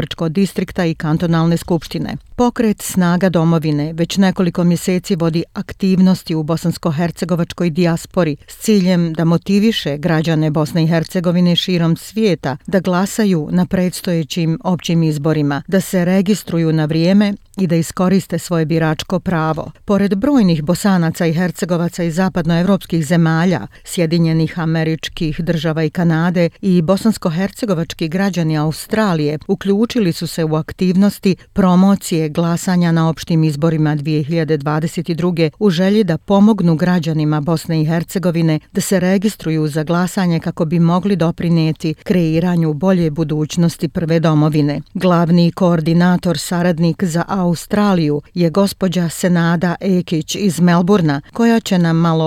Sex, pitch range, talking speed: female, 160-190 Hz, 125 wpm